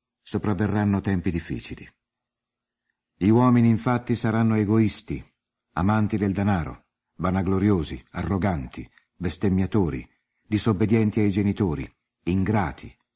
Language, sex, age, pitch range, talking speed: Italian, male, 60-79, 90-115 Hz, 80 wpm